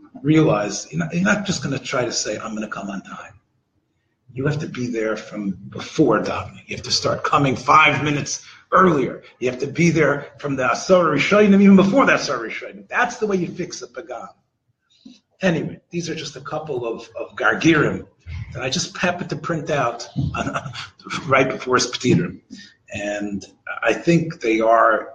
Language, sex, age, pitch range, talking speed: English, male, 40-59, 125-180 Hz, 185 wpm